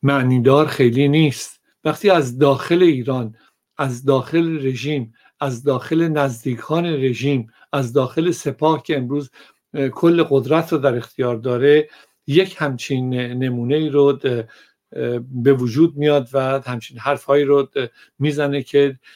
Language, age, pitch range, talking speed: Persian, 60-79, 125-145 Hz, 120 wpm